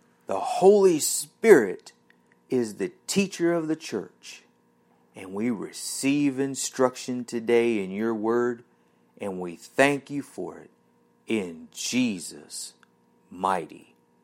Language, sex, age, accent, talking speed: English, male, 40-59, American, 110 wpm